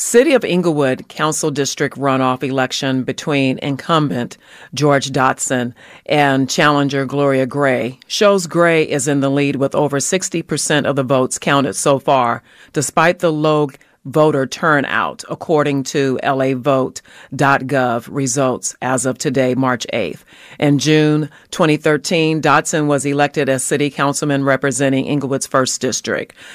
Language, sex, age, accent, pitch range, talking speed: English, female, 40-59, American, 135-150 Hz, 130 wpm